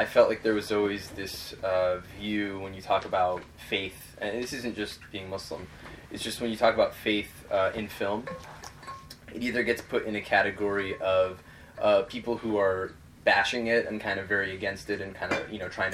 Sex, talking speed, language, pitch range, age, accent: male, 210 wpm, English, 90-110 Hz, 20-39, American